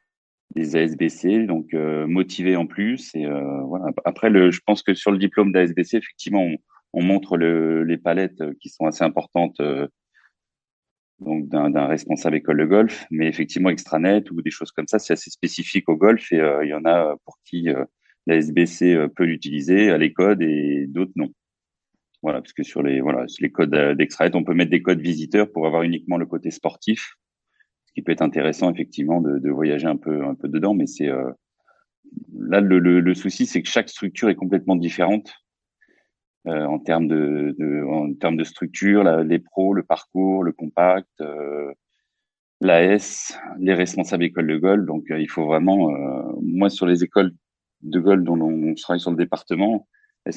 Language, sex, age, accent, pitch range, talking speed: French, male, 30-49, French, 80-95 Hz, 195 wpm